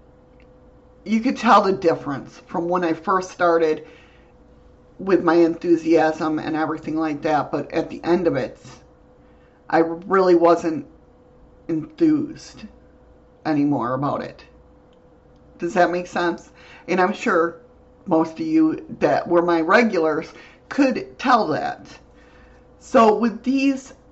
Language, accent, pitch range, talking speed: English, American, 160-215 Hz, 125 wpm